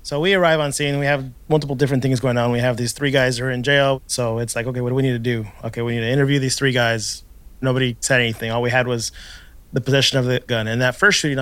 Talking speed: 290 wpm